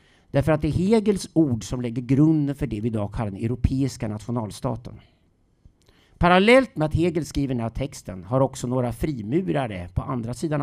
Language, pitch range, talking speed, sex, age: Swedish, 110-155 Hz, 180 wpm, male, 50-69